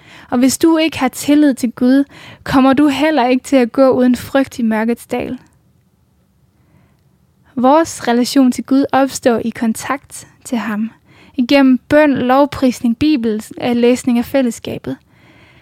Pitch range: 240-275 Hz